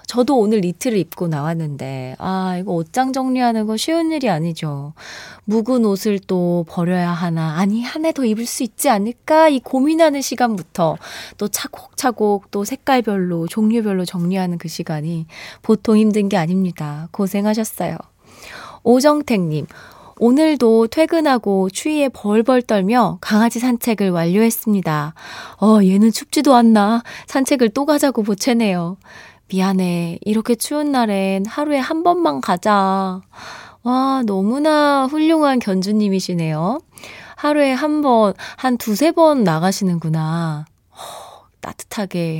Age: 20-39